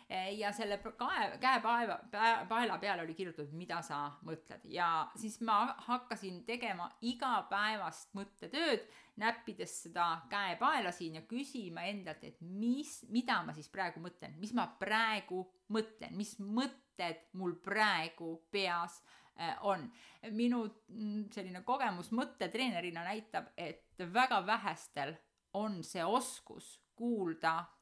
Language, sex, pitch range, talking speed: Hungarian, female, 170-225 Hz, 110 wpm